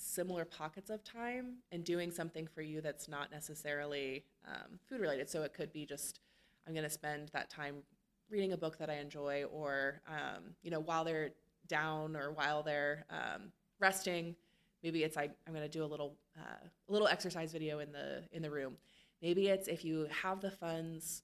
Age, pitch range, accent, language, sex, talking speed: 20-39, 150-190 Hz, American, English, female, 195 wpm